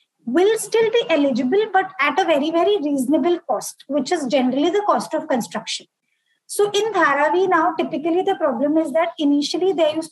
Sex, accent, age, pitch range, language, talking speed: female, Indian, 20-39, 275-345 Hz, English, 180 wpm